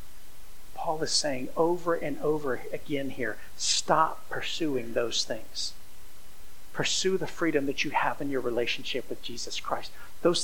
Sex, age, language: male, 50-69, English